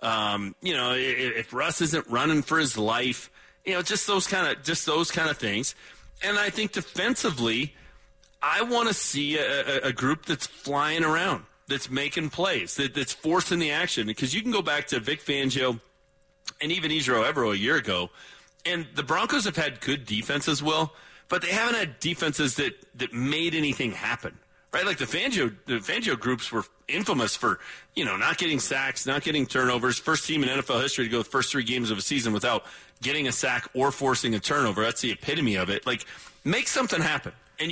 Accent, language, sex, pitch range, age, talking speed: American, English, male, 125-165 Hz, 40-59, 200 wpm